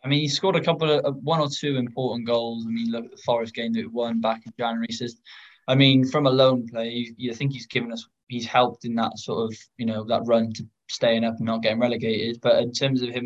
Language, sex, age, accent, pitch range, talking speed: English, male, 10-29, British, 115-130 Hz, 275 wpm